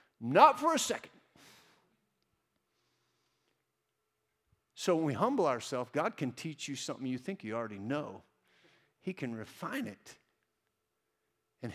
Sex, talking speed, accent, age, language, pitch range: male, 125 wpm, American, 50-69, English, 130-200 Hz